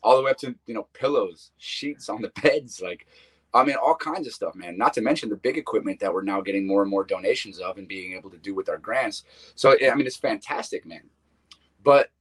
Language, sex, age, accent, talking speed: English, male, 30-49, American, 245 wpm